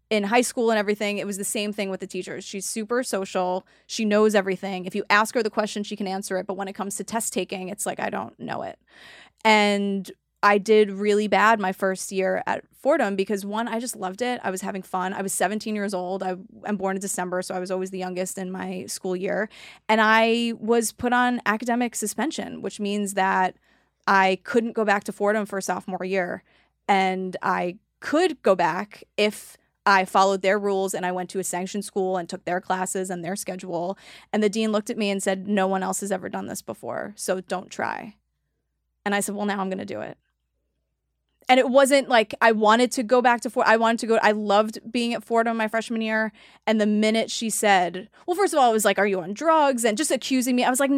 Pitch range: 190-225 Hz